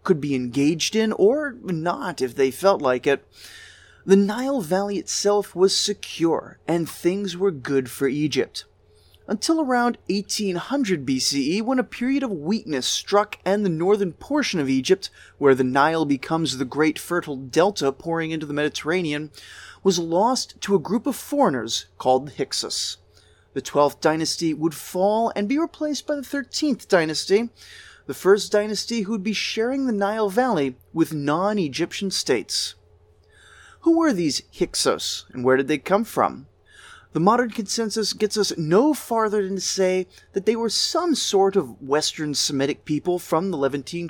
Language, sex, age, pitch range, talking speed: English, male, 20-39, 150-215 Hz, 160 wpm